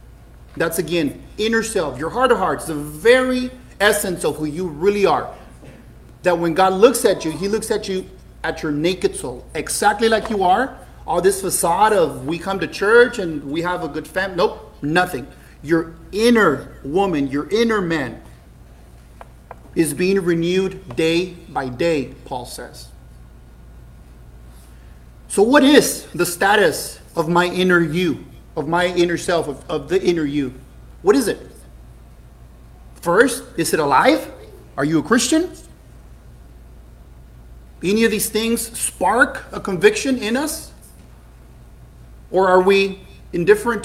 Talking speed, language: 145 wpm, English